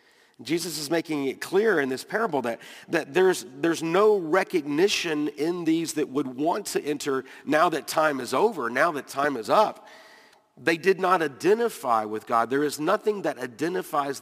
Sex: male